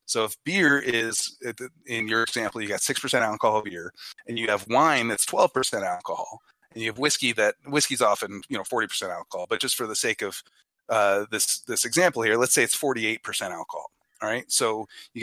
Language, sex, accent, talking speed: English, male, American, 215 wpm